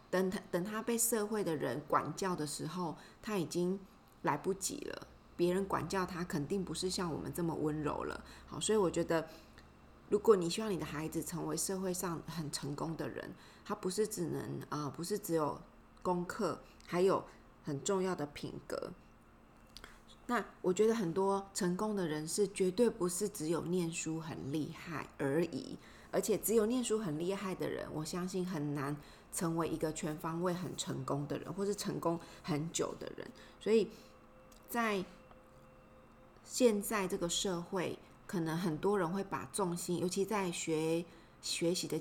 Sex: female